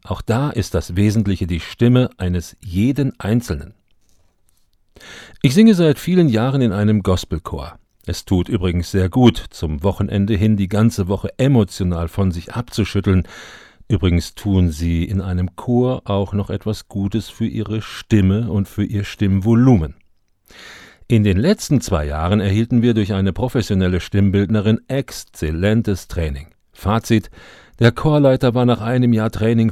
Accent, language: German, German